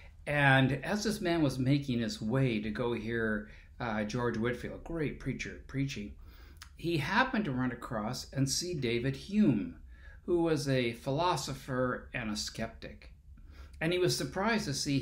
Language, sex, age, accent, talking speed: English, male, 50-69, American, 160 wpm